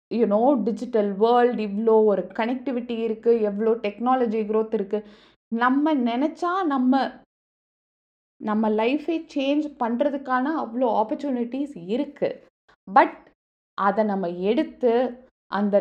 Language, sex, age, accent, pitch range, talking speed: Tamil, female, 20-39, native, 205-275 Hz, 100 wpm